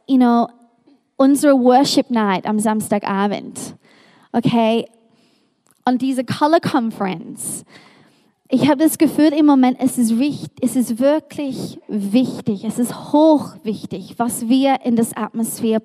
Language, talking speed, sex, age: German, 115 wpm, female, 20-39